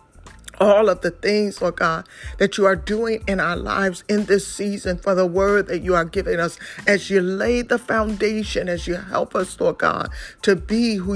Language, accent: English, American